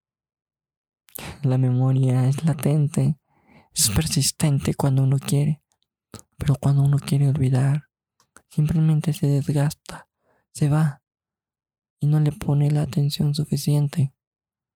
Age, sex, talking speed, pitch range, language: 20-39, male, 105 wpm, 140-160 Hz, Spanish